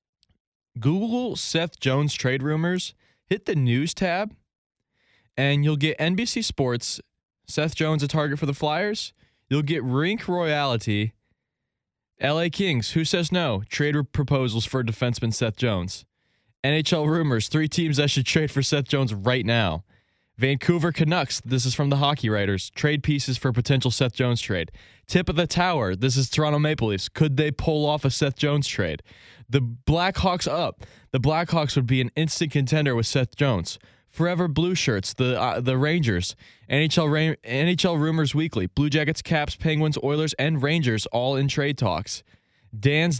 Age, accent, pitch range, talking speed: 20-39, American, 120-155 Hz, 160 wpm